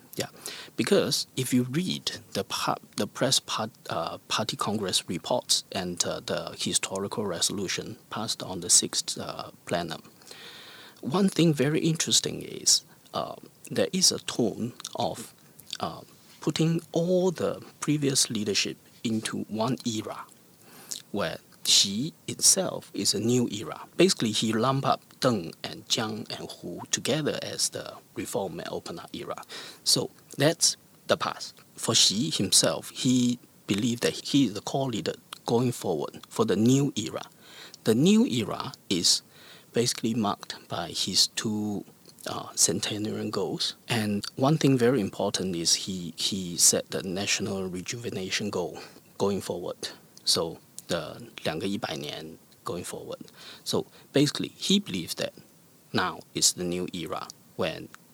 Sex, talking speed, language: male, 135 wpm, English